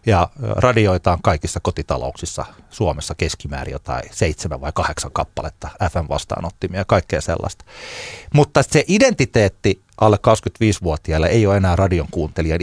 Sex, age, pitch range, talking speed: male, 30-49, 90-120 Hz, 125 wpm